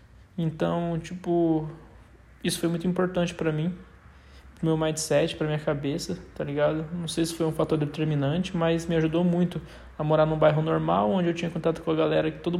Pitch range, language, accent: 160-175 Hz, Portuguese, Brazilian